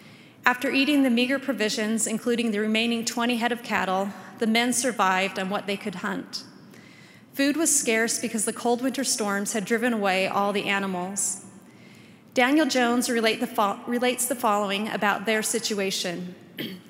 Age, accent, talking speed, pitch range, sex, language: 30-49, American, 160 wpm, 210-255 Hz, female, English